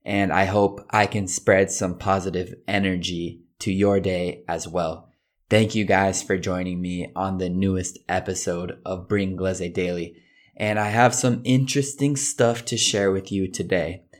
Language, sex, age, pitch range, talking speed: Italian, male, 20-39, 90-110 Hz, 165 wpm